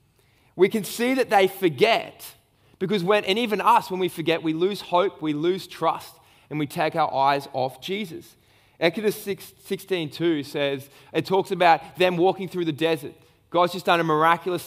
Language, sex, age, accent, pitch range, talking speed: English, male, 20-39, Australian, 145-195 Hz, 180 wpm